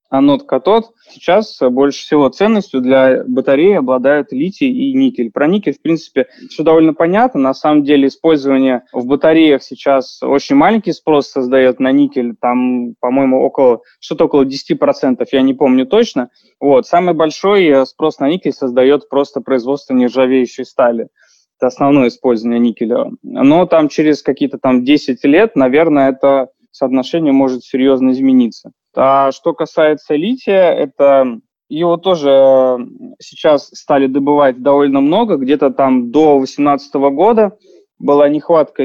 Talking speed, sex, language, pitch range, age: 140 wpm, male, Russian, 130-160 Hz, 20-39